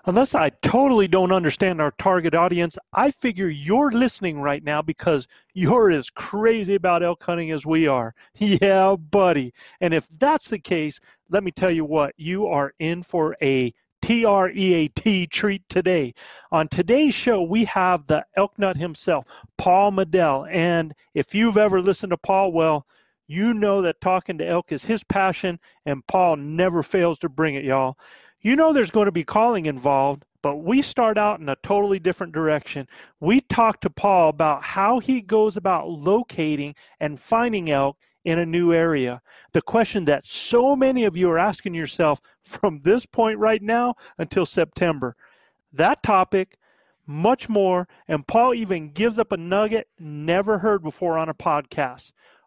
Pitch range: 160-210 Hz